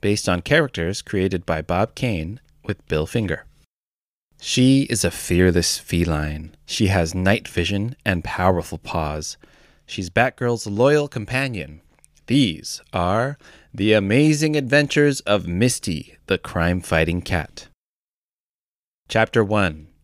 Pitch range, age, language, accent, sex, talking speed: 85-120 Hz, 30-49, English, American, male, 115 wpm